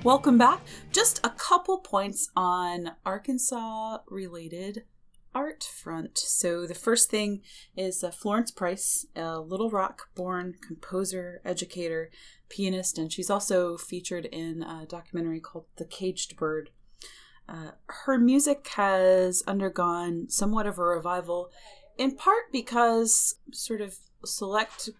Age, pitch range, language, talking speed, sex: 30-49, 165-215 Hz, English, 125 wpm, female